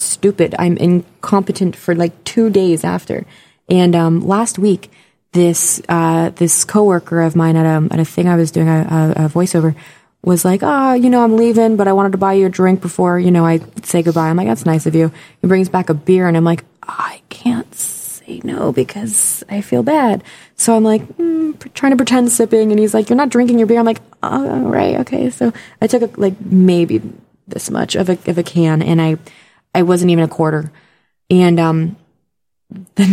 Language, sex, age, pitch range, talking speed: English, female, 20-39, 170-210 Hz, 215 wpm